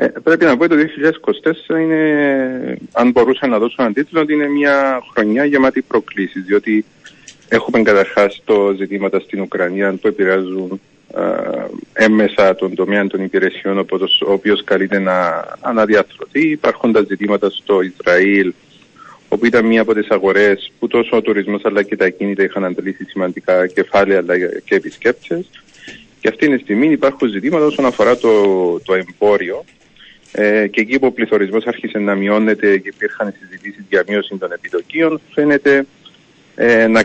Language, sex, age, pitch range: Greek, male, 30-49, 95-130 Hz